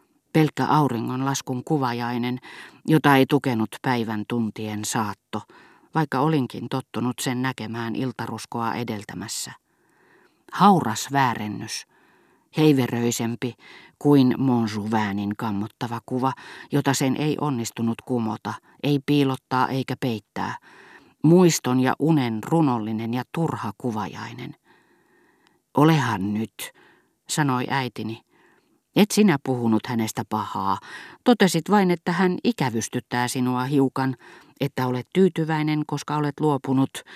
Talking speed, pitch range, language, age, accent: 100 wpm, 115-150 Hz, Finnish, 40-59, native